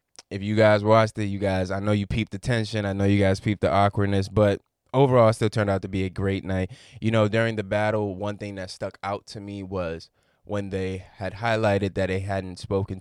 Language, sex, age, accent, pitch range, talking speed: English, male, 20-39, American, 95-110 Hz, 240 wpm